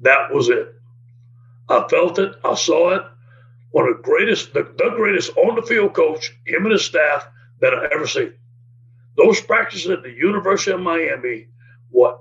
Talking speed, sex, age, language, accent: 170 wpm, male, 60-79, English, American